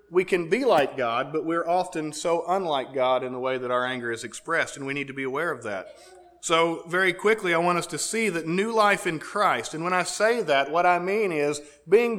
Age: 40-59